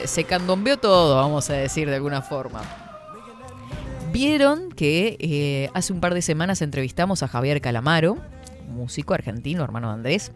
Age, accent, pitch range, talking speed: 20-39, Argentinian, 130-185 Hz, 150 wpm